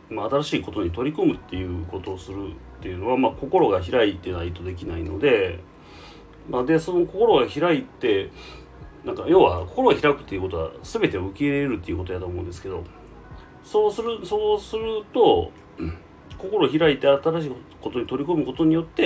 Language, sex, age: Japanese, male, 30-49